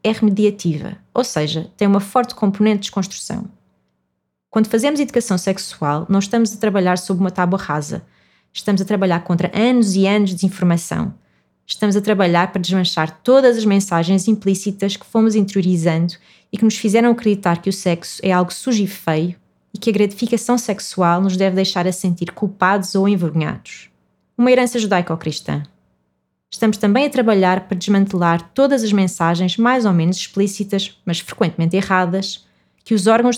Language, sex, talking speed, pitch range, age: Portuguese, female, 165 wpm, 175-220 Hz, 20-39